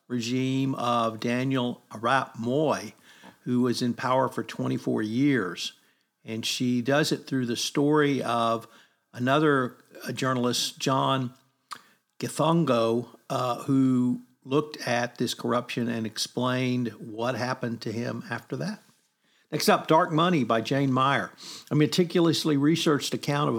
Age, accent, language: 50-69, American, English